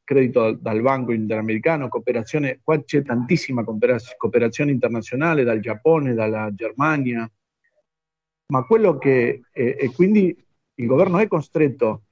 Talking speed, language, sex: 115 wpm, Italian, male